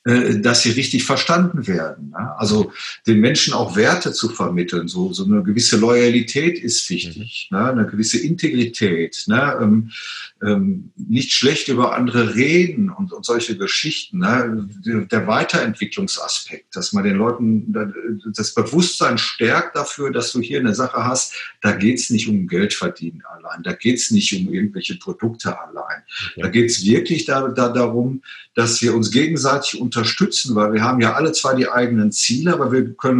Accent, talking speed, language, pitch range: German, 150 wpm, German, 115-145 Hz